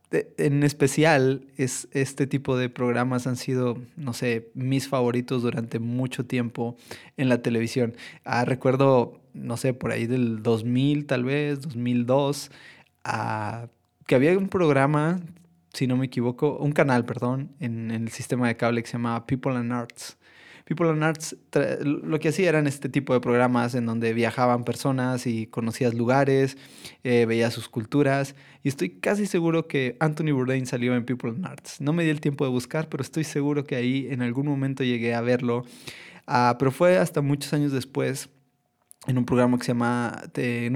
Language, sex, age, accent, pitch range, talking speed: Spanish, male, 20-39, Mexican, 120-140 Hz, 175 wpm